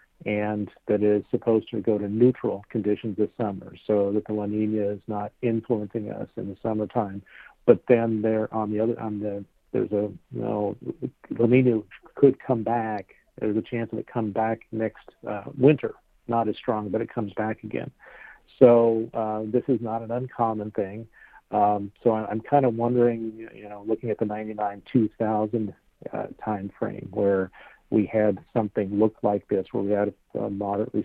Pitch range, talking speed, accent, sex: 105-115 Hz, 185 wpm, American, male